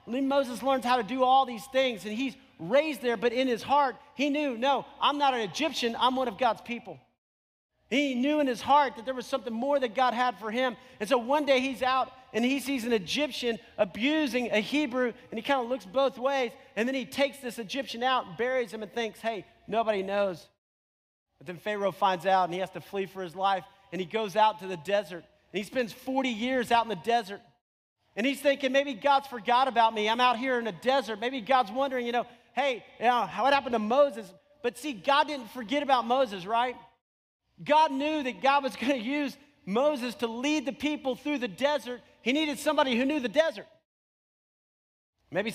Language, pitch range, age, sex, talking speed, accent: English, 205-265 Hz, 40-59, male, 215 wpm, American